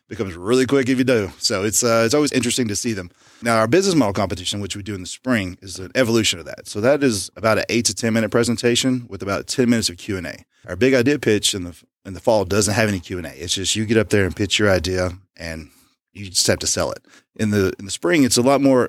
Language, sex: English, male